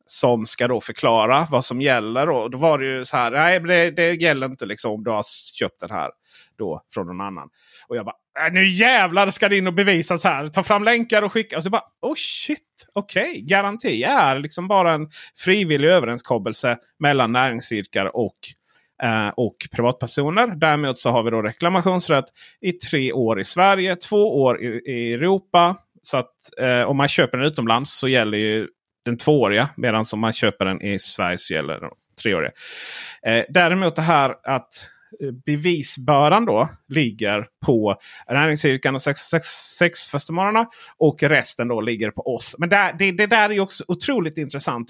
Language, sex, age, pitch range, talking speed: Swedish, male, 30-49, 125-185 Hz, 185 wpm